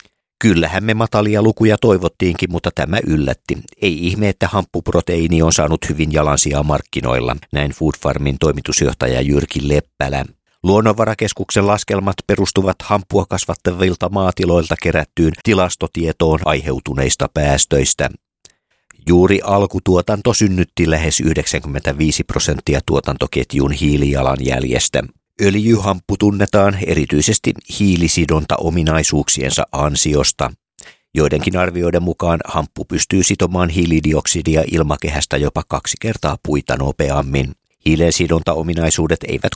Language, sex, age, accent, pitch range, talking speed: Finnish, male, 50-69, native, 70-90 Hz, 90 wpm